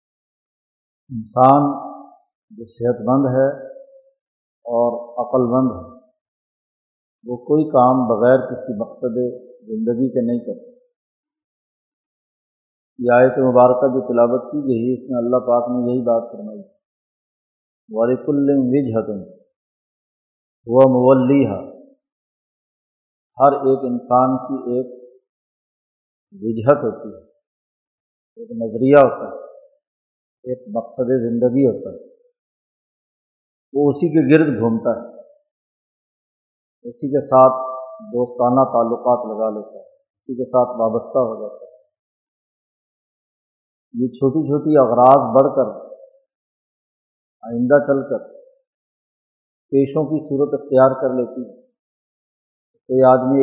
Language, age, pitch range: Urdu, 50-69, 125-155 Hz